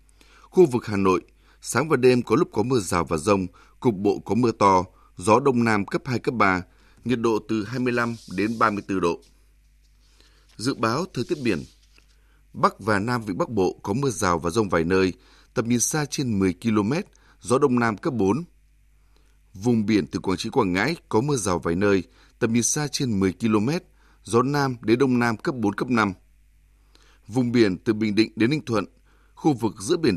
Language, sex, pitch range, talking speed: Vietnamese, male, 100-125 Hz, 200 wpm